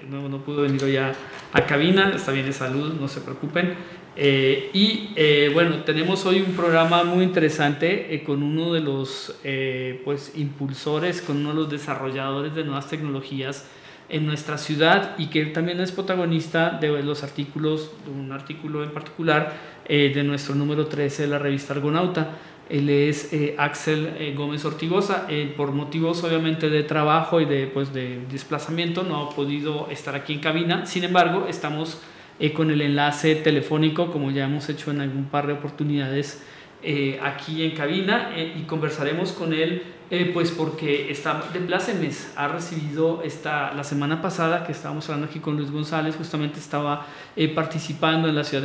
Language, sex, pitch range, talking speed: Spanish, male, 145-160 Hz, 175 wpm